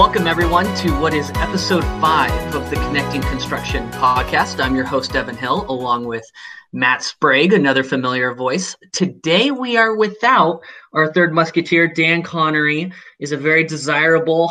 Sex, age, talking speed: male, 20-39, 155 wpm